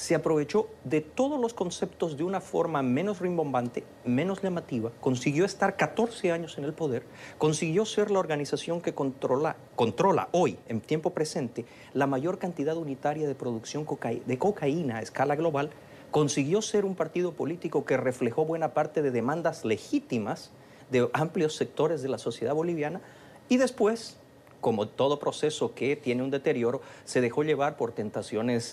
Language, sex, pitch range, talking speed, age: English, male, 130-180 Hz, 160 wpm, 40-59